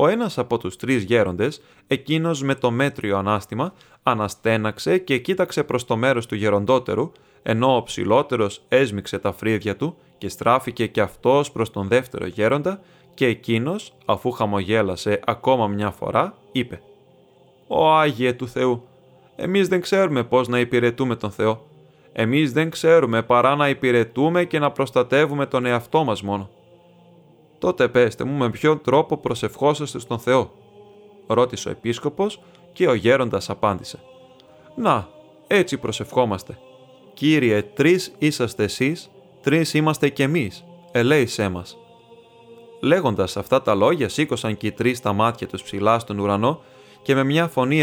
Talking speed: 145 wpm